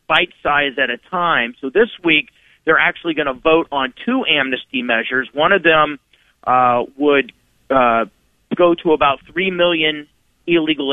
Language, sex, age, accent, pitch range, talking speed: English, male, 40-59, American, 135-170 Hz, 160 wpm